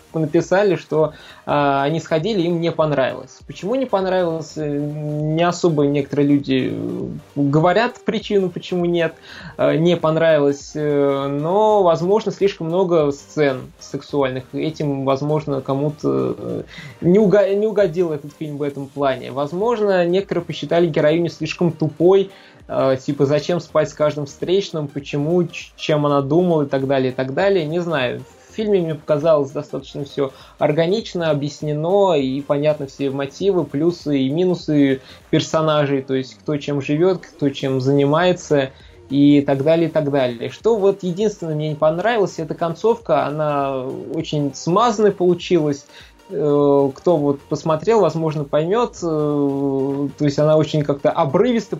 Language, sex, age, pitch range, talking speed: Russian, male, 20-39, 140-175 Hz, 140 wpm